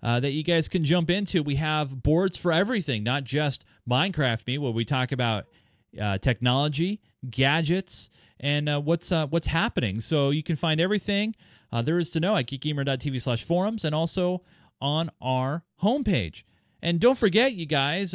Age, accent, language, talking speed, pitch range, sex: 30-49, American, English, 170 wpm, 125-160 Hz, male